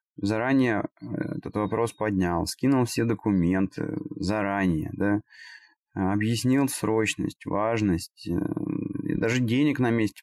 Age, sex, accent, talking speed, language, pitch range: 20-39, male, native, 95 wpm, Russian, 95-125 Hz